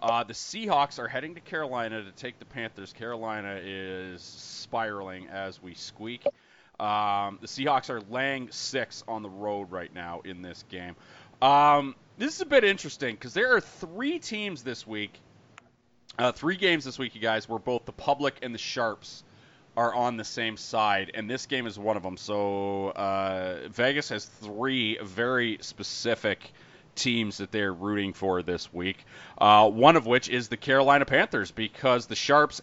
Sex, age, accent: male, 30-49, American